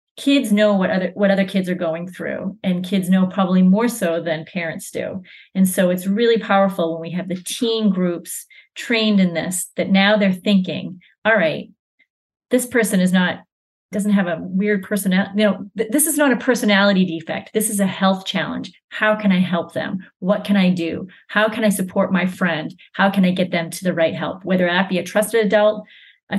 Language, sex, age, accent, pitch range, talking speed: English, female, 30-49, American, 180-210 Hz, 210 wpm